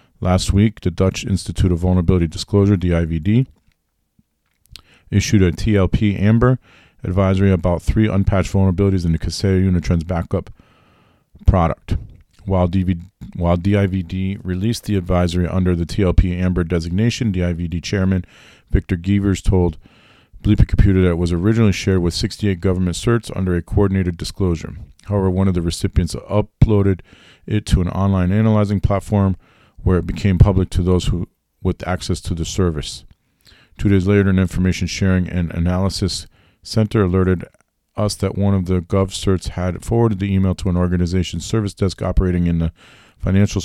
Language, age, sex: English, 40-59, male